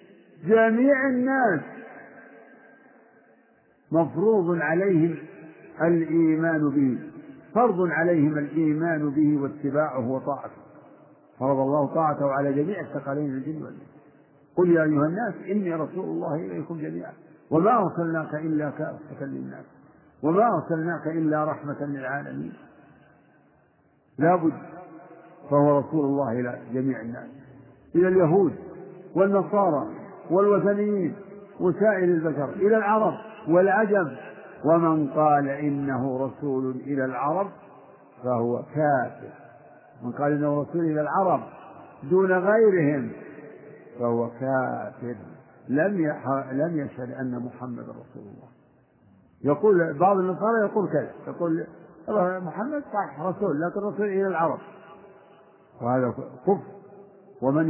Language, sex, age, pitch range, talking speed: Arabic, male, 50-69, 140-185 Hz, 100 wpm